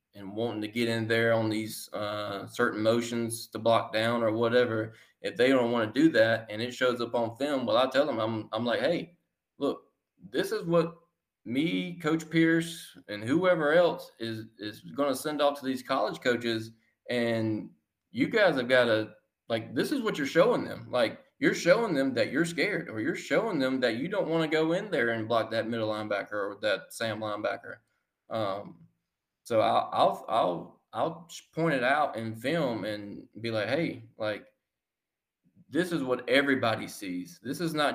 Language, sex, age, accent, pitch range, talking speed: English, male, 20-39, American, 110-140 Hz, 195 wpm